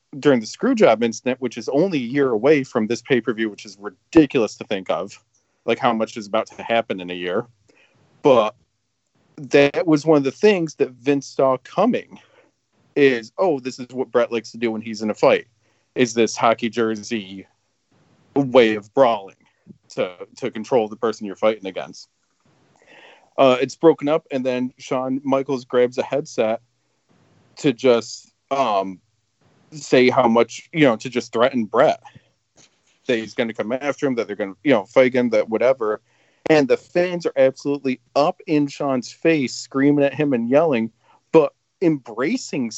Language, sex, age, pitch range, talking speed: English, male, 40-59, 115-145 Hz, 175 wpm